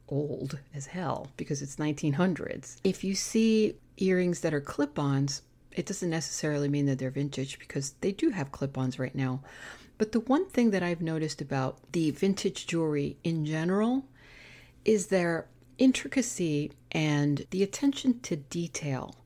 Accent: American